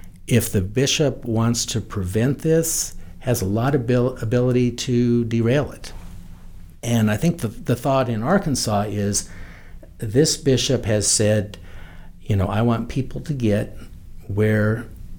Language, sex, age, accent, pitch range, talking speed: English, male, 60-79, American, 95-130 Hz, 140 wpm